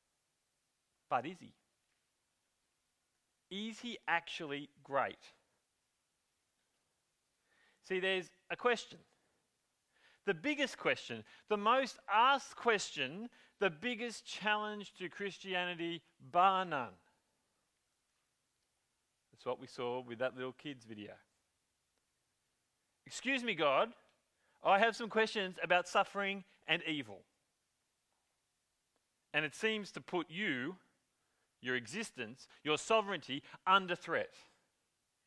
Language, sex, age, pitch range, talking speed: English, male, 30-49, 145-215 Hz, 95 wpm